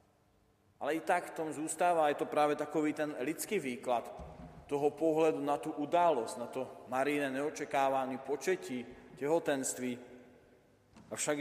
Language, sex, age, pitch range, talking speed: Slovak, male, 40-59, 125-150 Hz, 130 wpm